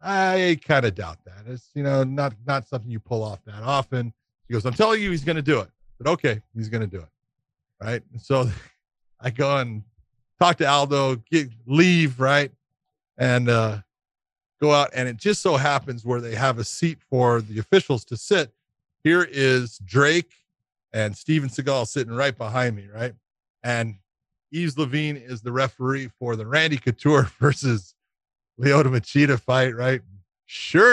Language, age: English, 40-59